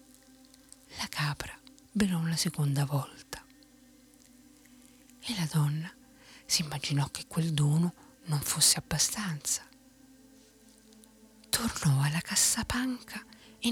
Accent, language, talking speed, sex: native, Italian, 90 wpm, female